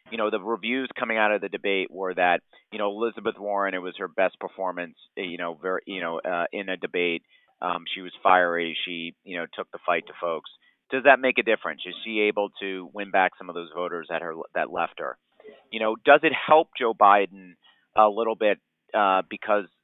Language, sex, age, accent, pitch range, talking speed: English, male, 30-49, American, 95-115 Hz, 220 wpm